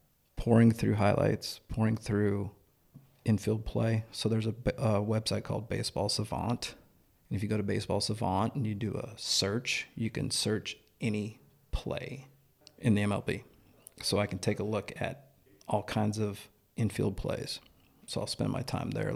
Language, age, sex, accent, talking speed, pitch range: English, 40-59, male, American, 165 wpm, 105-120 Hz